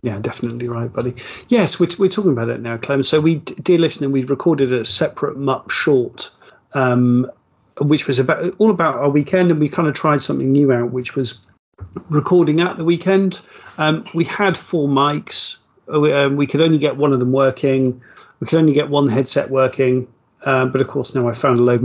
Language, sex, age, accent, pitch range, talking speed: English, male, 40-59, British, 125-150 Hz, 205 wpm